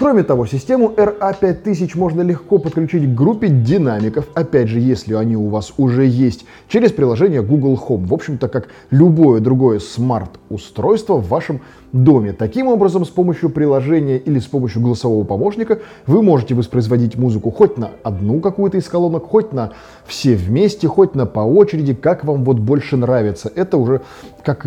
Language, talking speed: Russian, 165 wpm